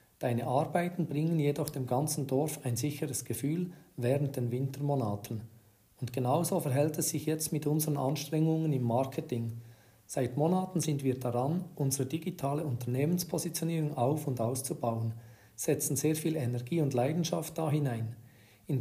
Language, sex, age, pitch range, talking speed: German, male, 40-59, 125-155 Hz, 140 wpm